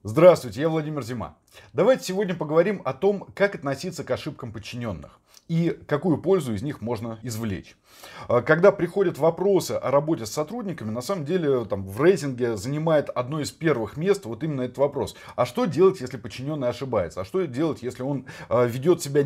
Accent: native